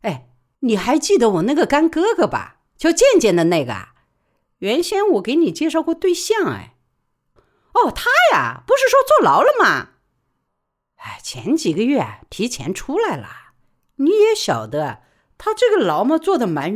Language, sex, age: Chinese, female, 50-69